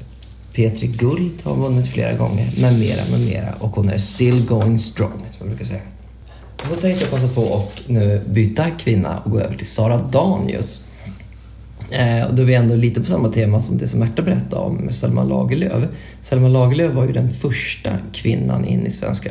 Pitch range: 105-125 Hz